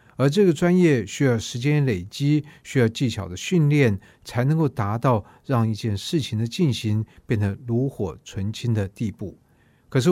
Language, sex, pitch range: Chinese, male, 110-145 Hz